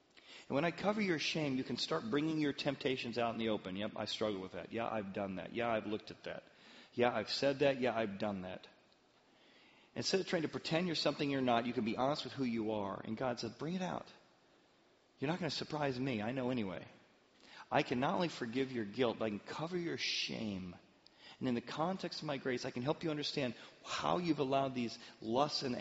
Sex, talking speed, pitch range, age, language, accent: male, 235 wpm, 115-150 Hz, 40-59, English, American